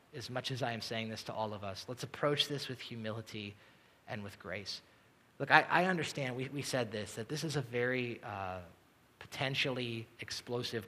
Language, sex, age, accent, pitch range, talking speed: English, male, 30-49, American, 110-140 Hz, 195 wpm